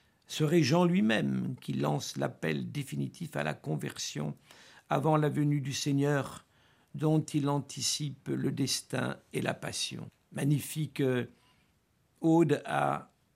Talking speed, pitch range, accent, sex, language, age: 115 wpm, 135-155 Hz, French, male, French, 60-79